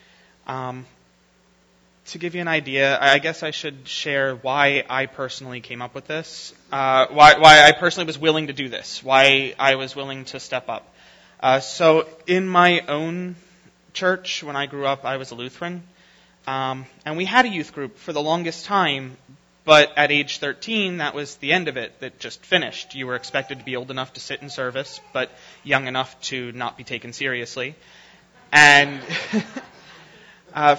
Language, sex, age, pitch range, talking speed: English, male, 20-39, 130-150 Hz, 185 wpm